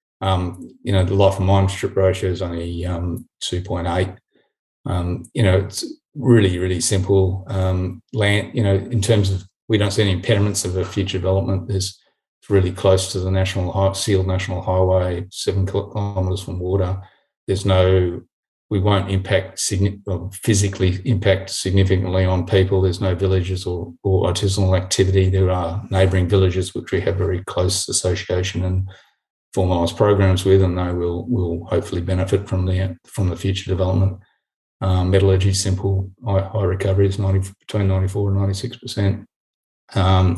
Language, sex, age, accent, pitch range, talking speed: English, male, 30-49, Australian, 90-100 Hz, 160 wpm